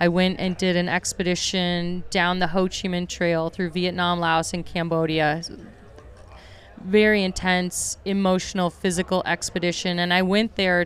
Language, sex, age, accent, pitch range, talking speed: English, female, 30-49, American, 170-195 Hz, 145 wpm